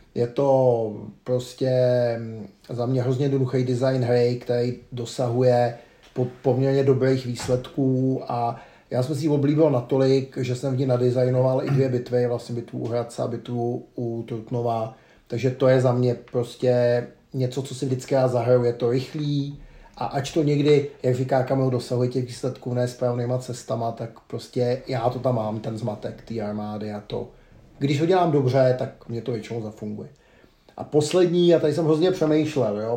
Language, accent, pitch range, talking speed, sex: Czech, native, 120-135 Hz, 165 wpm, male